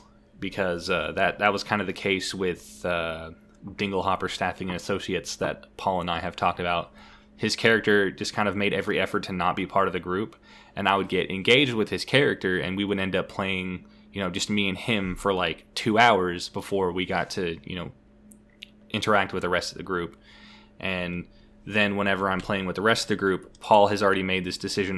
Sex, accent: male, American